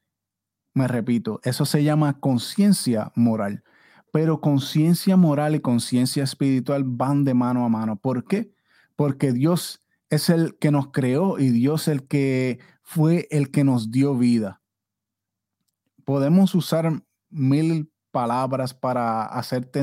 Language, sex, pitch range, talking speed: Spanish, male, 125-155 Hz, 135 wpm